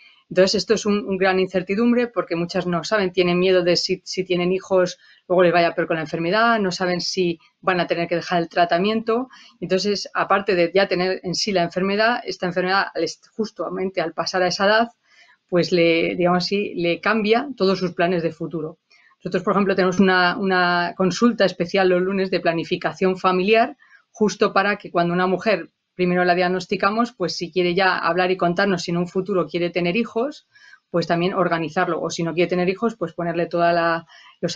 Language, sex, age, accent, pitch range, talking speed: Spanish, female, 30-49, Spanish, 175-195 Hz, 195 wpm